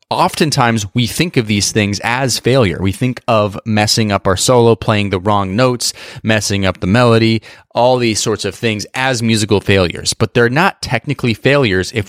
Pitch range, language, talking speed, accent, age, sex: 95-125 Hz, English, 185 wpm, American, 30-49, male